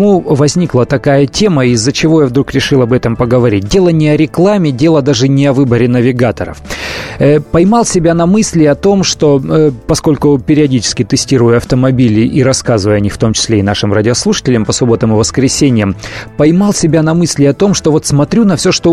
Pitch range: 120-155 Hz